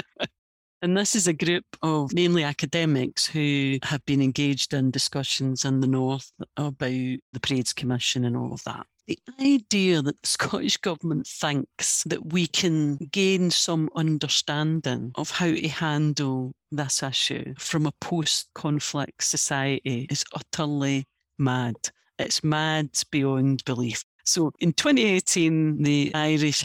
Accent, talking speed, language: British, 135 wpm, English